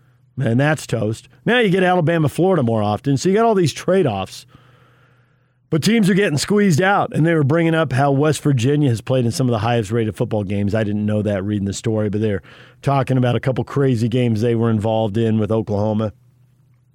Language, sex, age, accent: English, male, 50-69, American